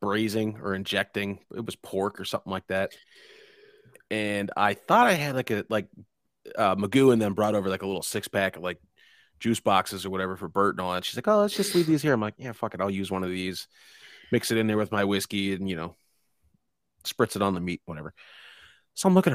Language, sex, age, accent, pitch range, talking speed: English, male, 30-49, American, 95-130 Hz, 240 wpm